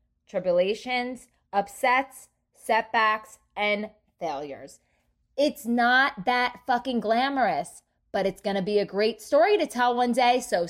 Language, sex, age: English, female, 20-39